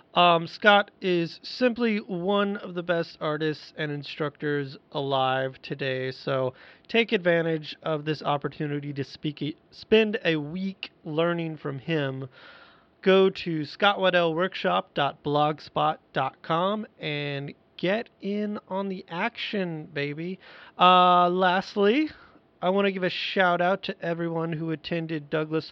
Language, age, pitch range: English, 30-49, 140-180 Hz